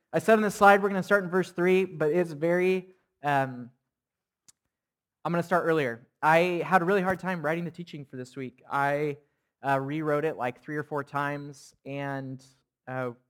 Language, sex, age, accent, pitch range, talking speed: English, male, 20-39, American, 130-165 Hz, 200 wpm